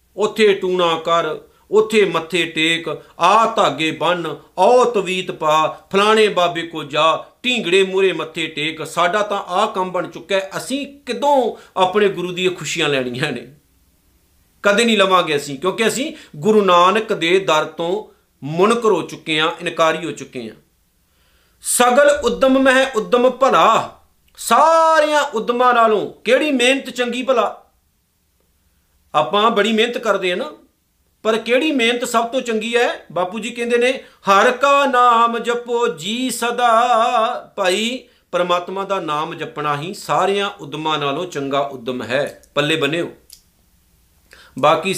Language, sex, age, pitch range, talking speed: Punjabi, male, 50-69, 155-230 Hz, 135 wpm